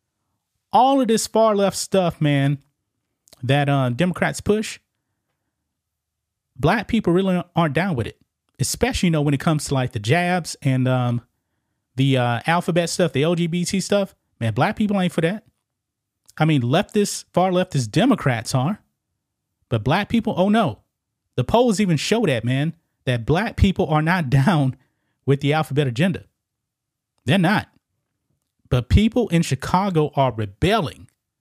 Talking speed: 155 wpm